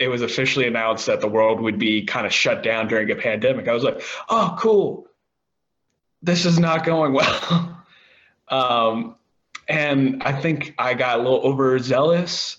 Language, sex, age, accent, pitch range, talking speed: English, male, 20-39, American, 115-155 Hz, 165 wpm